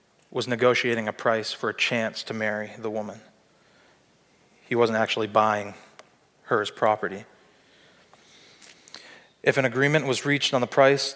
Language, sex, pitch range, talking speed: English, male, 110-125 Hz, 140 wpm